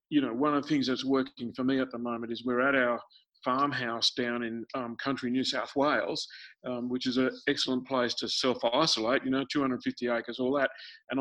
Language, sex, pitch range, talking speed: English, male, 125-155 Hz, 215 wpm